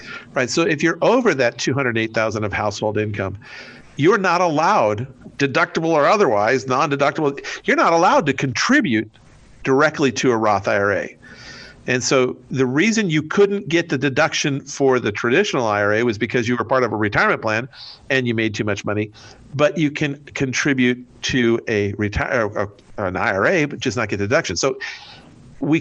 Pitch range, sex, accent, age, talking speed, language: 115-140 Hz, male, American, 50-69, 165 wpm, English